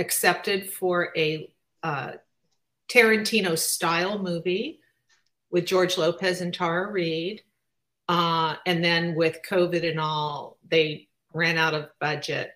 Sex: female